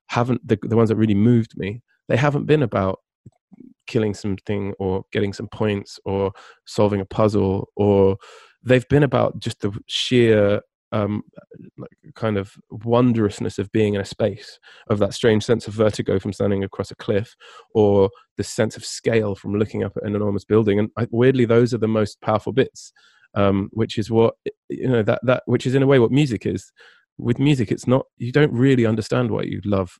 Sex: male